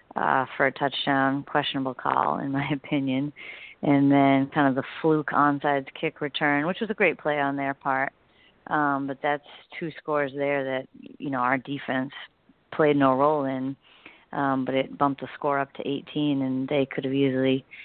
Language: English